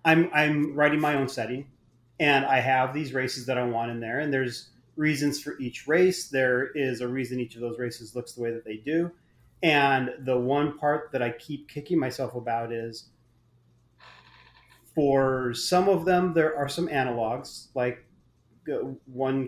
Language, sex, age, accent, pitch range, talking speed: English, male, 30-49, American, 120-140 Hz, 175 wpm